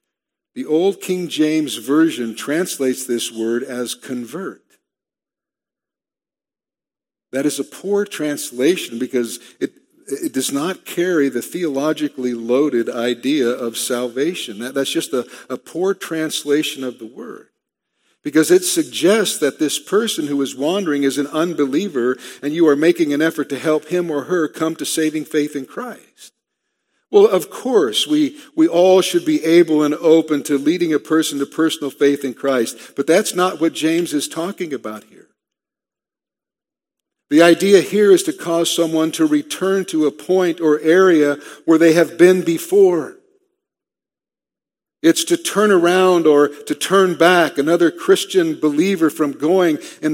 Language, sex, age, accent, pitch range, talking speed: English, male, 50-69, American, 140-180 Hz, 155 wpm